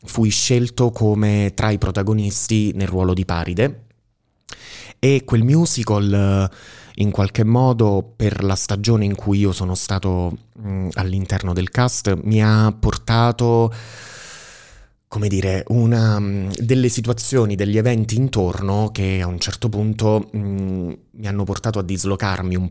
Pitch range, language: 90-110 Hz, Italian